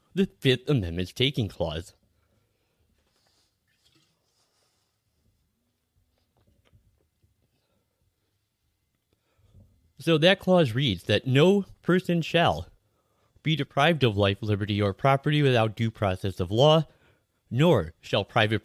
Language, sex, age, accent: English, male, 30-49, American